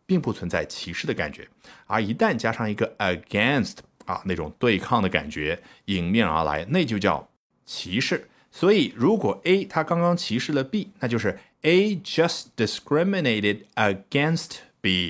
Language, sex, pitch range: Chinese, male, 100-165 Hz